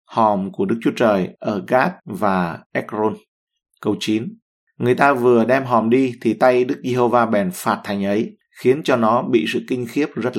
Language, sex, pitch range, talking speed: Vietnamese, male, 110-135 Hz, 195 wpm